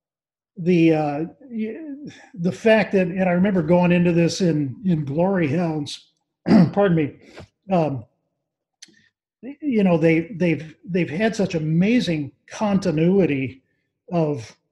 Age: 40-59